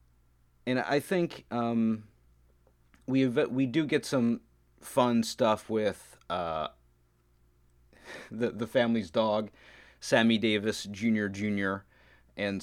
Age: 30-49